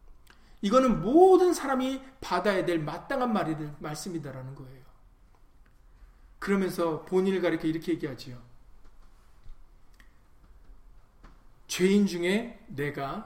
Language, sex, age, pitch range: Korean, male, 40-59, 120-195 Hz